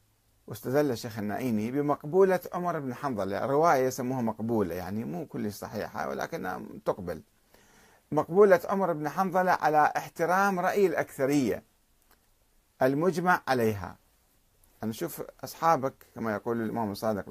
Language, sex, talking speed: Arabic, male, 115 wpm